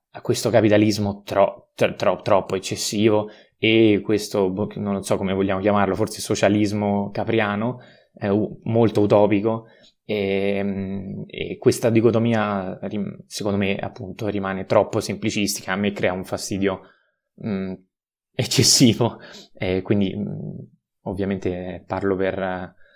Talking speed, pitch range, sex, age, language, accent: 115 wpm, 100-110 Hz, male, 20-39, Italian, native